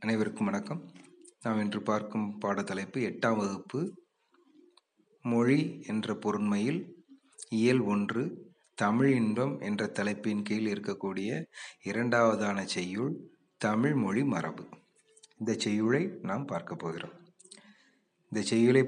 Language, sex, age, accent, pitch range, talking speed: Tamil, male, 30-49, native, 105-145 Hz, 100 wpm